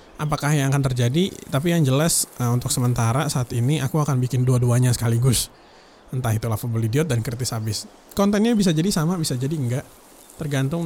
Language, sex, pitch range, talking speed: English, male, 120-155 Hz, 175 wpm